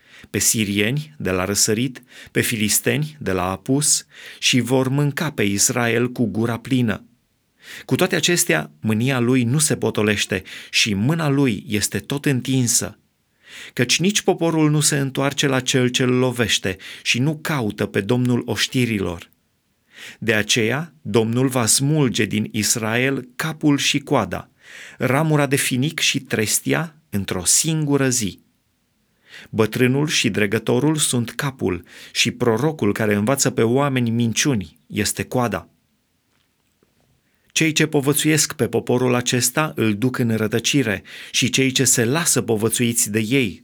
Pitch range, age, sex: 110-140 Hz, 30-49, male